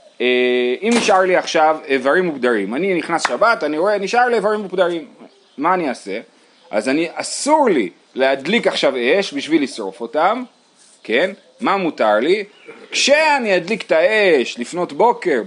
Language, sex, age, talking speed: Hebrew, male, 30-49, 150 wpm